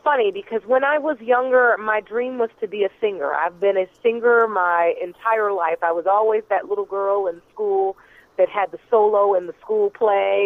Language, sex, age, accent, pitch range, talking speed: English, female, 30-49, American, 205-315 Hz, 205 wpm